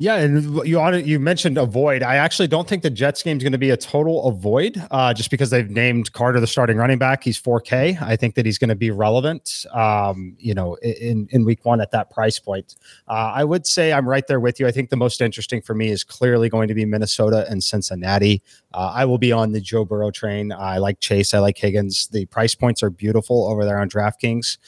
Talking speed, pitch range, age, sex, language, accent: 245 wpm, 105-135 Hz, 30-49, male, English, American